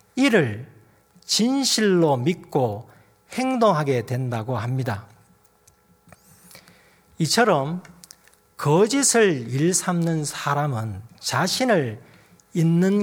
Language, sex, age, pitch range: Korean, male, 40-59, 120-195 Hz